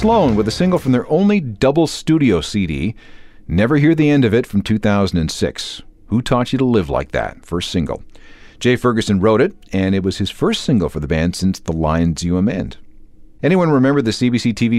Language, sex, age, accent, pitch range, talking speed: English, male, 40-59, American, 90-120 Hz, 205 wpm